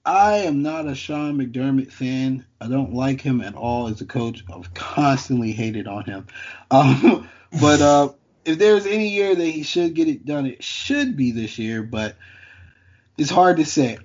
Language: English